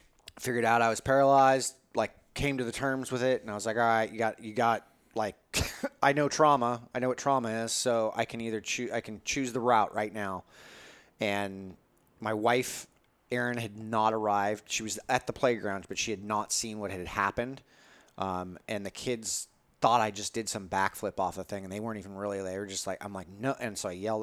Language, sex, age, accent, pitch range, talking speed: English, male, 30-49, American, 100-120 Hz, 230 wpm